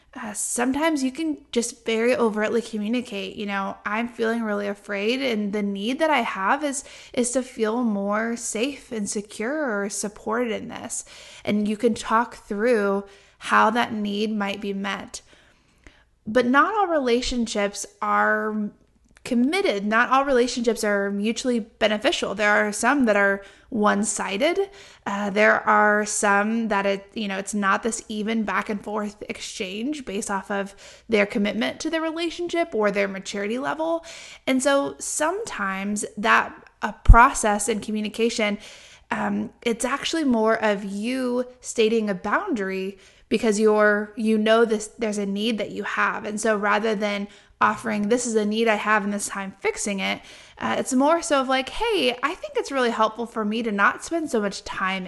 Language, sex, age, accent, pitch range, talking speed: English, female, 20-39, American, 205-245 Hz, 165 wpm